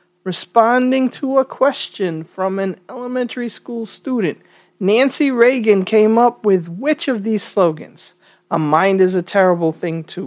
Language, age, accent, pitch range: English, 40-59, American, 160-220 Hz